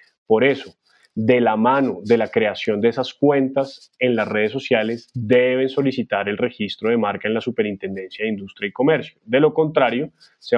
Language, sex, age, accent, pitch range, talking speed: Spanish, male, 20-39, Colombian, 110-135 Hz, 180 wpm